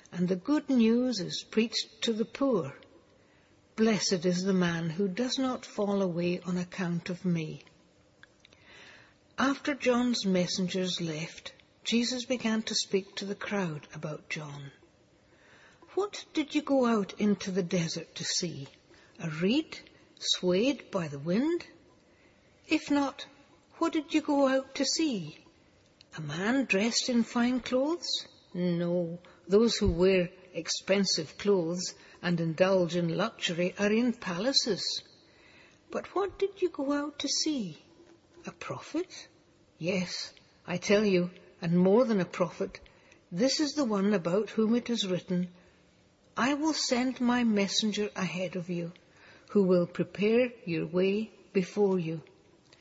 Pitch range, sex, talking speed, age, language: 180-245 Hz, female, 140 wpm, 60-79, English